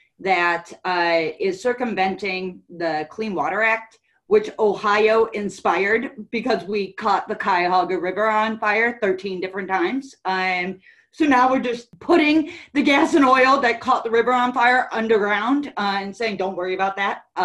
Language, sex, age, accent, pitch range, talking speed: English, female, 30-49, American, 185-250 Hz, 160 wpm